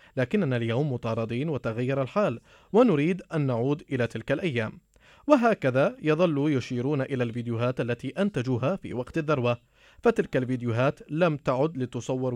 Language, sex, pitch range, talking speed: Arabic, male, 120-155 Hz, 125 wpm